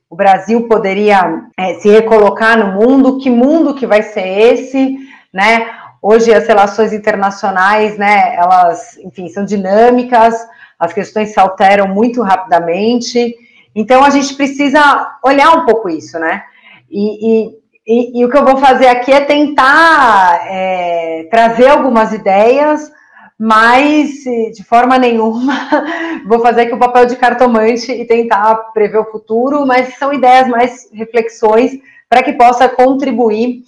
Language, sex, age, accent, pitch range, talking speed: Portuguese, female, 30-49, Brazilian, 205-255 Hz, 135 wpm